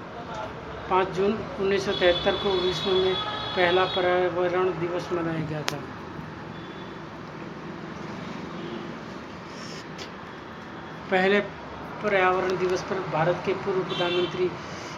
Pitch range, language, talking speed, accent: 175-185 Hz, Hindi, 80 wpm, native